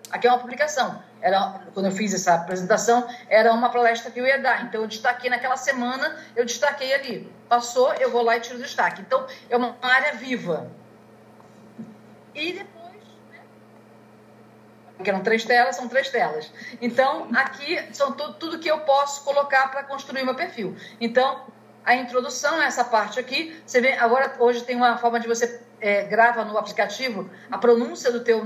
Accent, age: Brazilian, 50-69